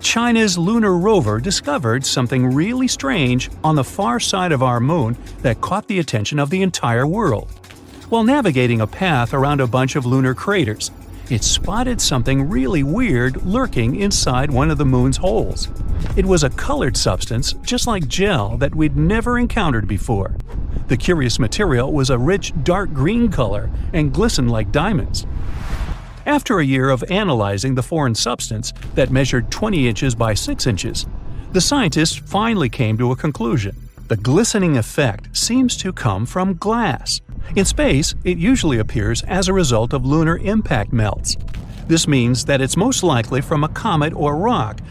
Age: 50-69